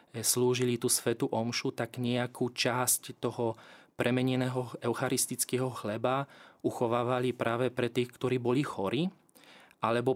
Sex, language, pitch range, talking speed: male, Slovak, 120-130 Hz, 110 wpm